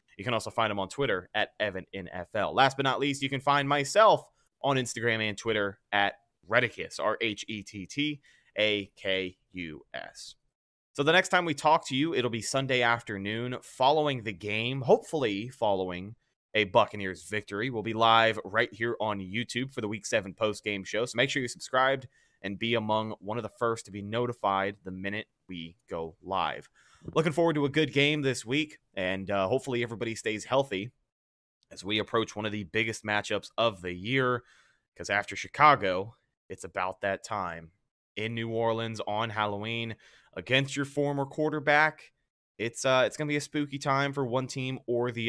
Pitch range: 100-130 Hz